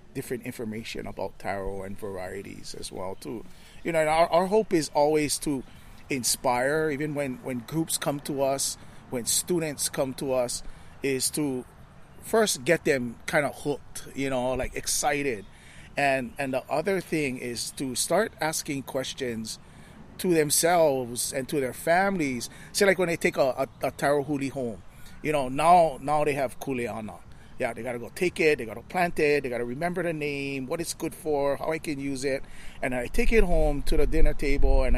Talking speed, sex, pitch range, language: 190 wpm, male, 95-155 Hz, English